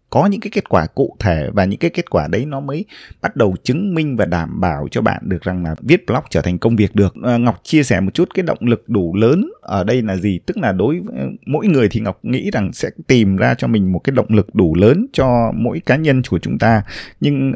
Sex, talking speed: male, 265 wpm